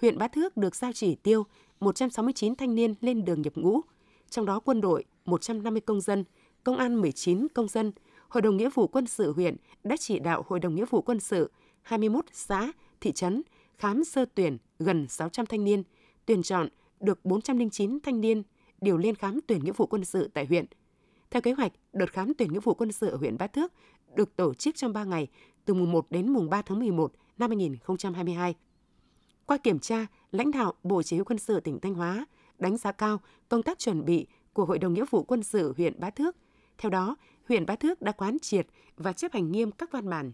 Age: 20-39